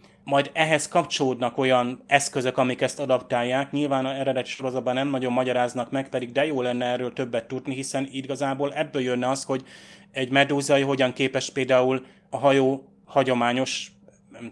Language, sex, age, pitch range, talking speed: Hungarian, male, 30-49, 125-135 Hz, 155 wpm